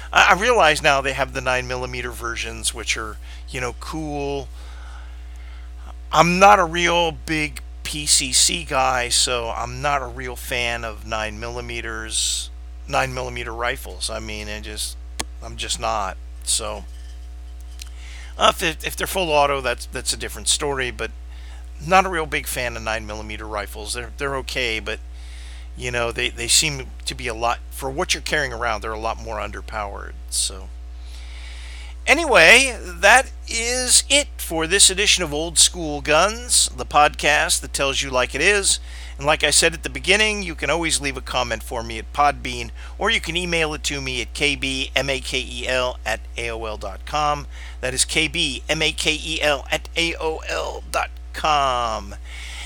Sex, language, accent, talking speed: male, English, American, 155 wpm